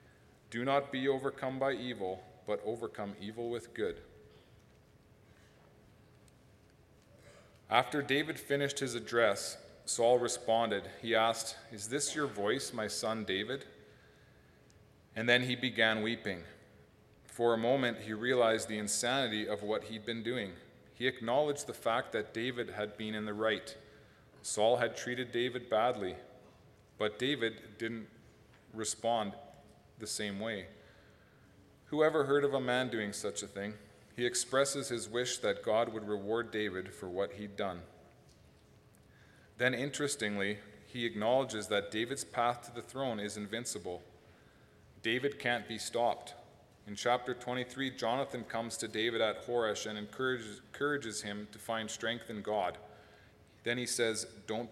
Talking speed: 140 wpm